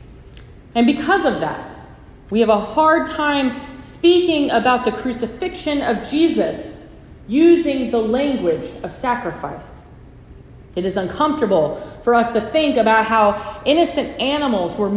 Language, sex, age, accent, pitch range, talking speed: English, female, 30-49, American, 215-280 Hz, 130 wpm